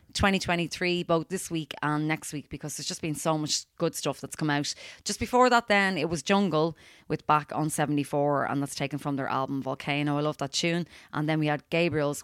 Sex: female